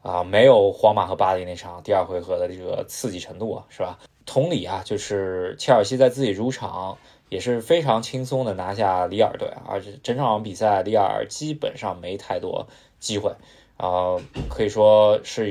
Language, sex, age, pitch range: Chinese, male, 20-39, 95-125 Hz